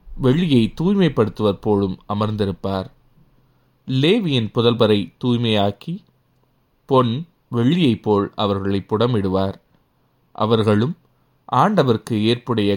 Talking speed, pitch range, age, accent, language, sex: 70 wpm, 100-130 Hz, 20-39, native, Tamil, male